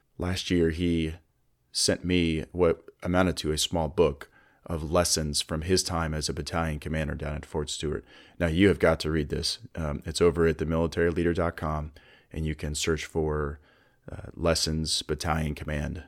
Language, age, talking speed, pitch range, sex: English, 30-49, 170 wpm, 75-85 Hz, male